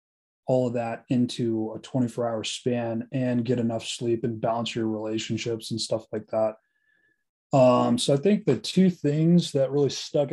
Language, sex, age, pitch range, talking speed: English, male, 20-39, 115-135 Hz, 175 wpm